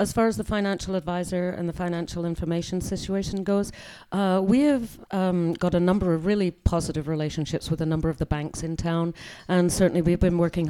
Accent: British